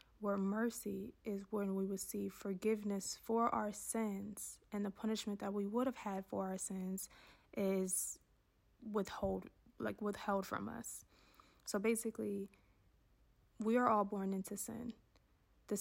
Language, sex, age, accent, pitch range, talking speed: English, female, 20-39, American, 205-225 Hz, 130 wpm